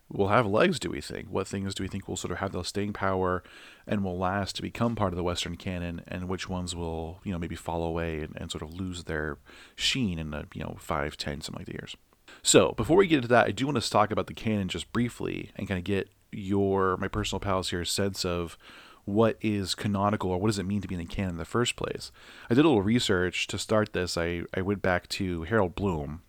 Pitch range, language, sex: 85-105 Hz, English, male